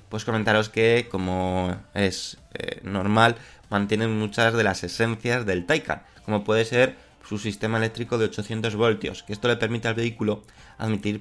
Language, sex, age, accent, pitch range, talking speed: Spanish, male, 20-39, Spanish, 95-115 Hz, 160 wpm